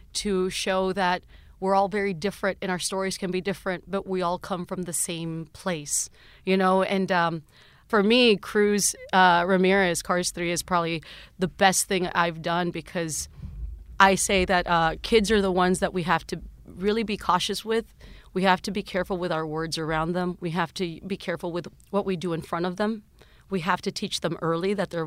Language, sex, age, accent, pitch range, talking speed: English, female, 30-49, American, 165-190 Hz, 210 wpm